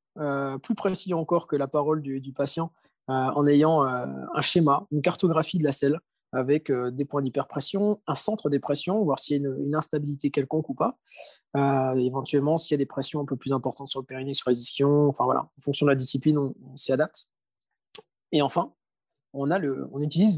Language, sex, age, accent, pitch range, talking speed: French, male, 20-39, French, 140-175 Hz, 220 wpm